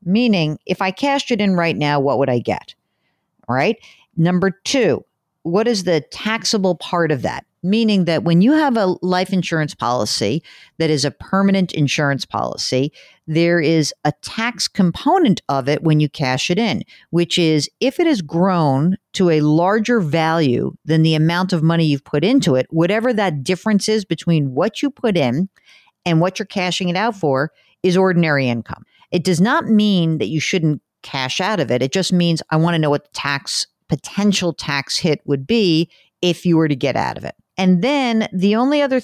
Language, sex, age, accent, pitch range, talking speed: English, female, 50-69, American, 150-195 Hz, 195 wpm